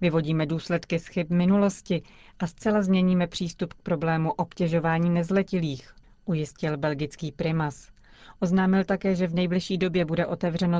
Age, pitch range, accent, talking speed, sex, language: 30-49, 155-180 Hz, native, 130 wpm, female, Czech